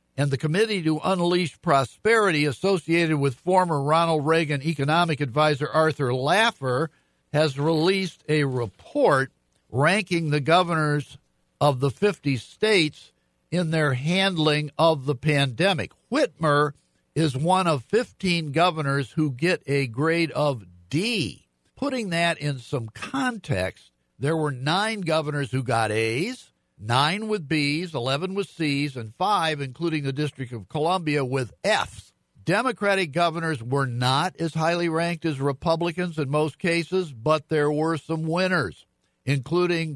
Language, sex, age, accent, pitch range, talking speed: English, male, 60-79, American, 140-170 Hz, 135 wpm